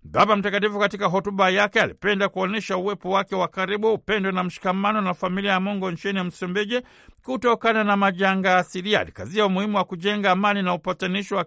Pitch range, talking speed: 185-210 Hz, 170 wpm